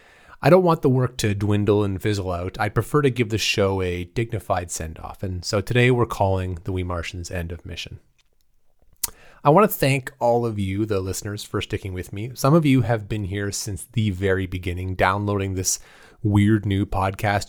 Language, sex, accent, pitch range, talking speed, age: English, male, American, 95-125 Hz, 200 wpm, 30-49